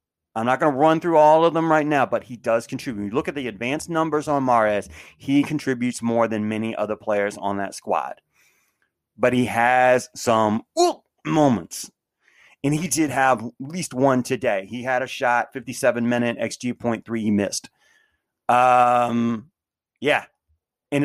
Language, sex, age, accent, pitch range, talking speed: English, male, 30-49, American, 115-135 Hz, 170 wpm